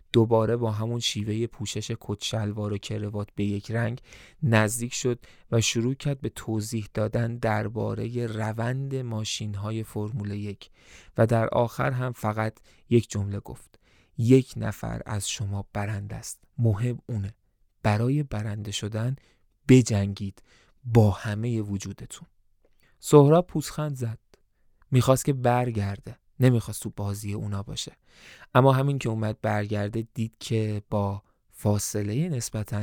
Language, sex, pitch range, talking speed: Persian, male, 105-125 Hz, 125 wpm